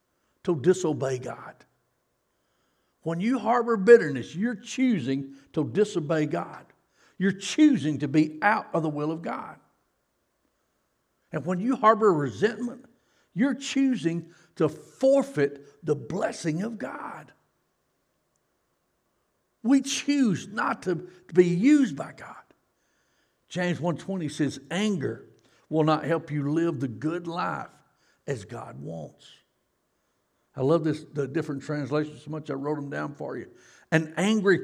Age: 60-79